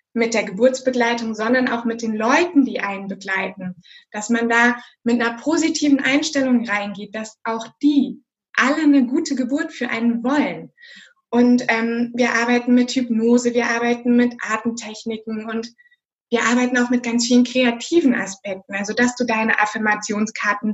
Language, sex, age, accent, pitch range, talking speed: German, female, 20-39, German, 220-265 Hz, 155 wpm